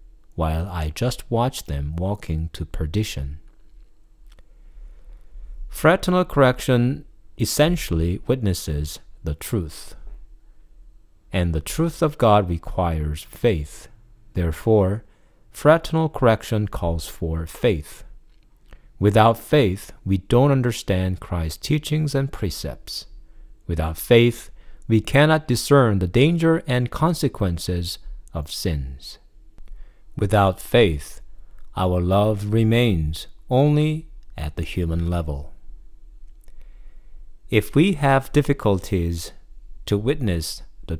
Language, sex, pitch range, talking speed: English, male, 80-115 Hz, 95 wpm